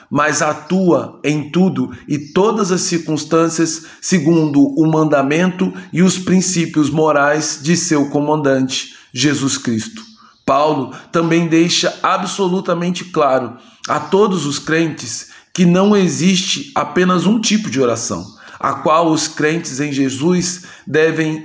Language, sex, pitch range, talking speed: Portuguese, male, 145-165 Hz, 125 wpm